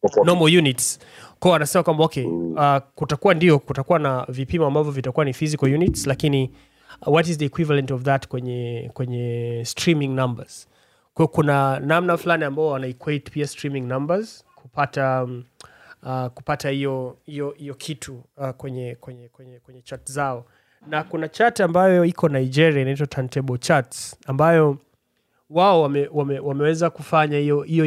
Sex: male